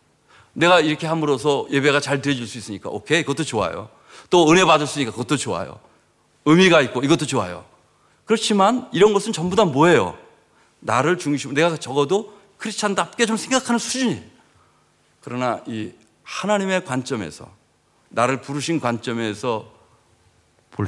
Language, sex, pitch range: Korean, male, 110-155 Hz